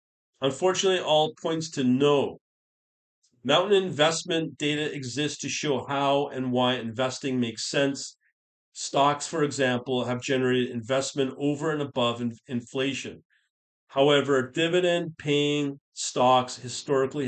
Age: 40-59